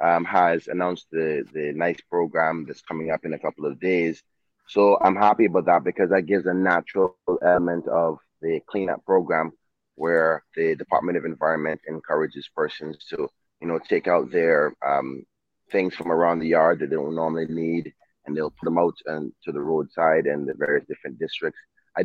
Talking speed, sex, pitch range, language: 190 wpm, male, 80-90 Hz, English